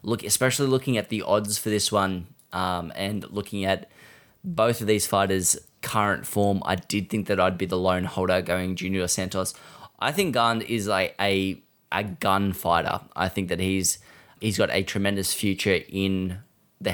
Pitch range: 95-110 Hz